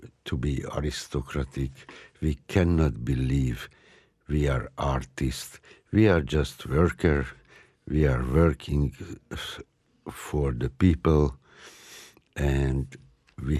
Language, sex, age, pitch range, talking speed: Italian, male, 60-79, 70-85 Hz, 95 wpm